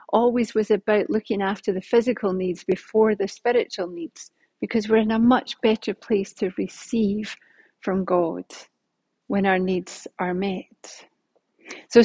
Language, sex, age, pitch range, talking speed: English, female, 40-59, 190-230 Hz, 145 wpm